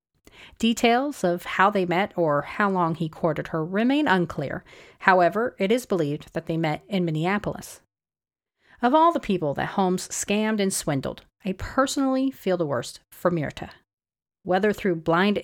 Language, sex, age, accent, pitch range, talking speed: English, female, 40-59, American, 165-230 Hz, 160 wpm